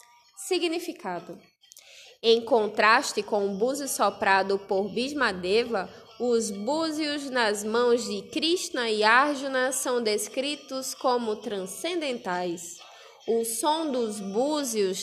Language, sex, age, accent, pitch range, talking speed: Portuguese, female, 20-39, Brazilian, 215-280 Hz, 100 wpm